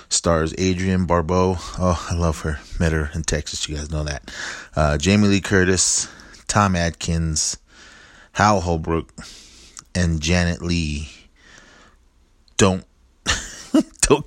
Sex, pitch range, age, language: male, 80-100 Hz, 30-49, English